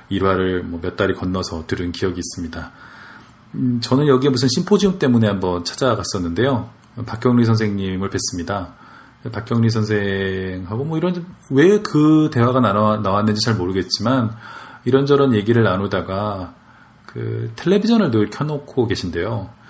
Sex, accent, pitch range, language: male, native, 95-120 Hz, Korean